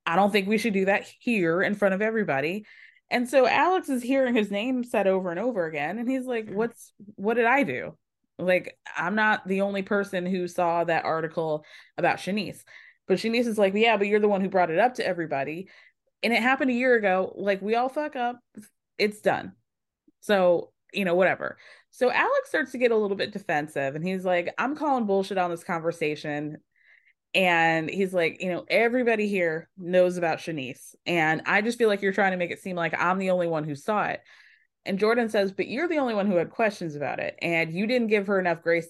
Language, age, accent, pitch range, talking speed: English, 20-39, American, 175-230 Hz, 220 wpm